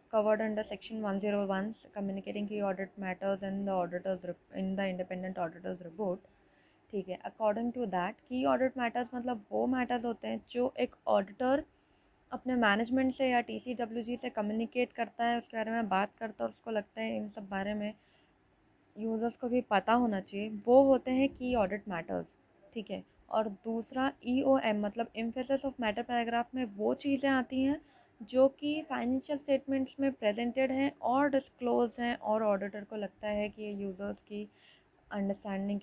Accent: Indian